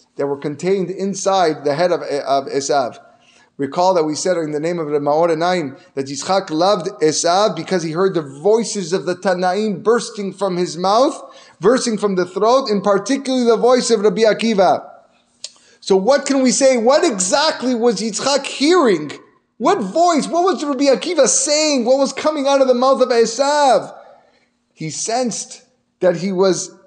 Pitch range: 160-230 Hz